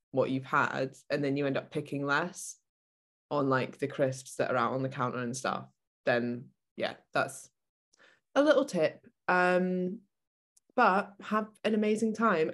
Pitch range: 135-165 Hz